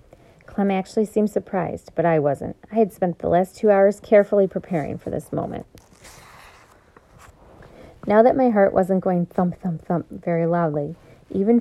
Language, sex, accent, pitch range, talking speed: English, female, American, 165-195 Hz, 160 wpm